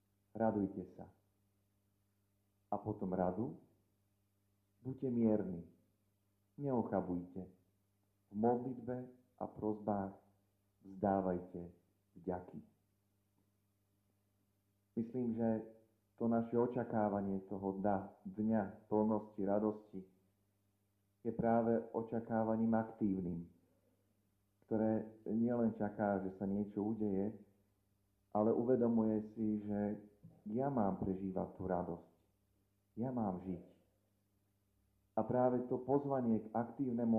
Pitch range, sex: 100-110 Hz, male